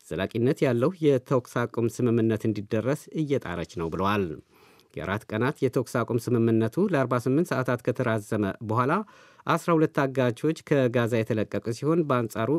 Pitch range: 110-140 Hz